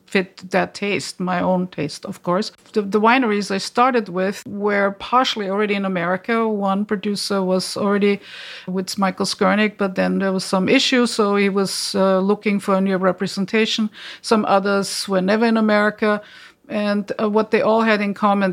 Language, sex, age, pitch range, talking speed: English, female, 50-69, 190-215 Hz, 180 wpm